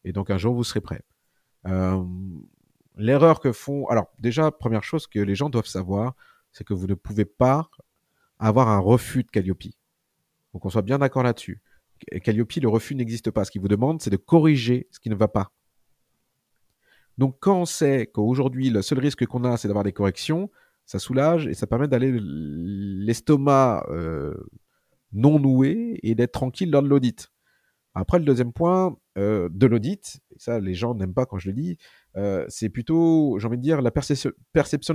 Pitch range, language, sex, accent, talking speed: 105-145 Hz, French, male, French, 190 wpm